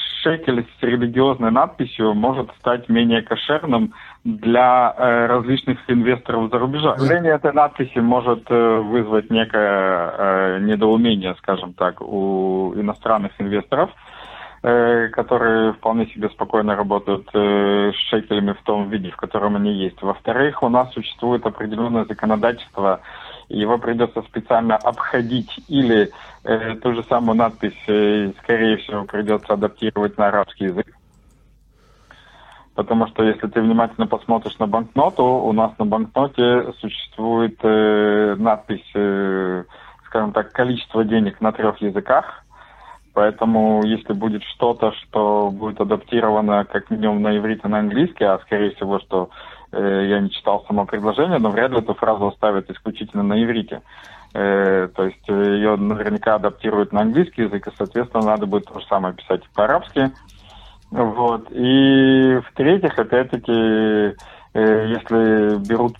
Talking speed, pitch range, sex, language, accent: 125 wpm, 105-120 Hz, male, Russian, native